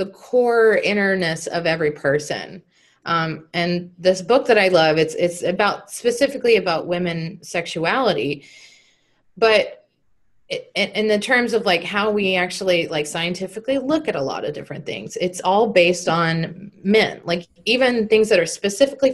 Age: 30-49